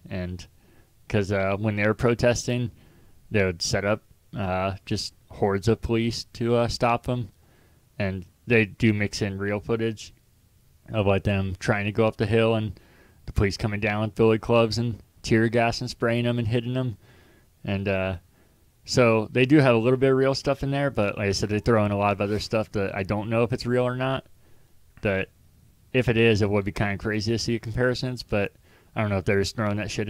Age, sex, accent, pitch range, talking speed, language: 20-39, male, American, 95-120 Hz, 215 wpm, English